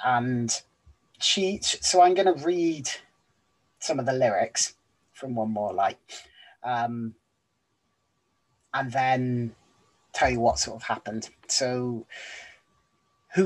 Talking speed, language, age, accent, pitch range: 115 wpm, English, 30-49, British, 115-145 Hz